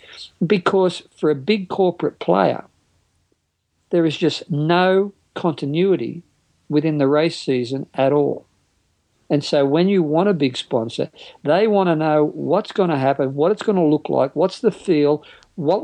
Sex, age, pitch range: male, 50-69, 135-170 Hz